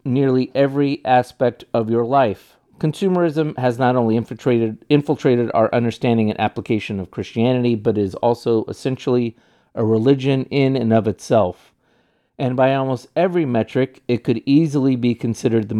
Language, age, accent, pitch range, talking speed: English, 40-59, American, 105-130 Hz, 150 wpm